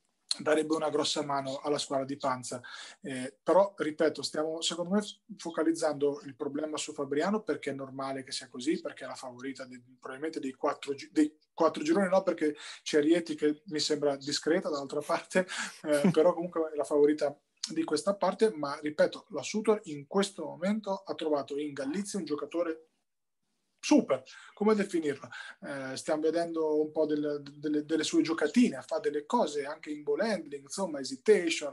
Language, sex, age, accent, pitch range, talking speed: Italian, male, 20-39, native, 145-190 Hz, 170 wpm